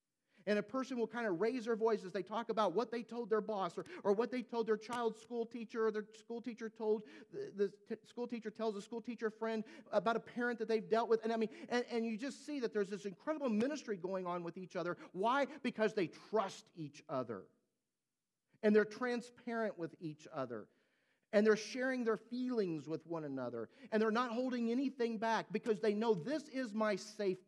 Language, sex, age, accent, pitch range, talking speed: English, male, 50-69, American, 140-225 Hz, 220 wpm